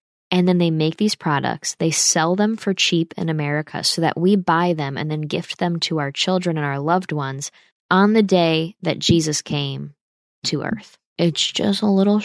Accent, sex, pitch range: American, female, 150-190 Hz